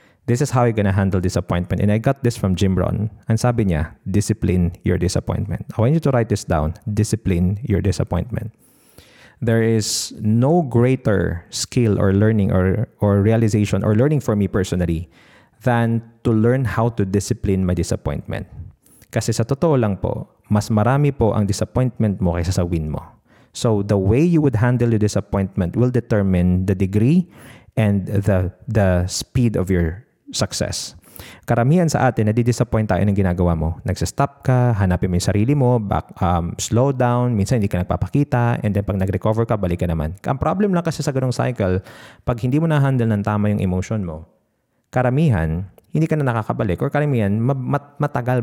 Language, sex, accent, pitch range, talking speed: Filipino, male, native, 95-125 Hz, 180 wpm